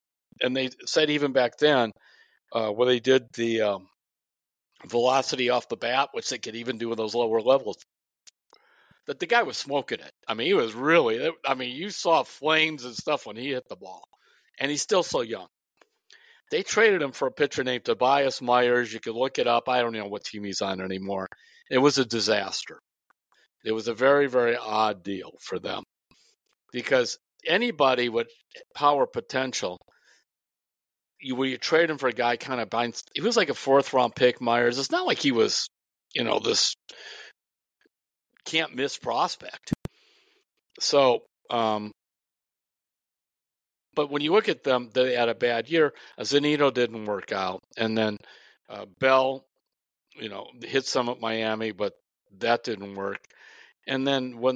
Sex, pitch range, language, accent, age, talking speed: male, 115-150 Hz, English, American, 60-79, 175 wpm